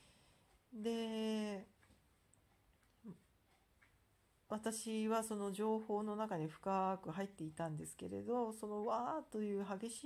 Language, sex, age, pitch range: Japanese, female, 40-59, 160-225 Hz